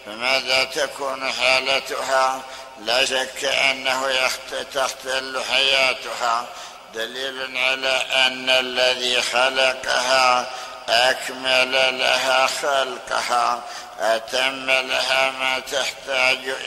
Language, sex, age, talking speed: Arabic, male, 60-79, 70 wpm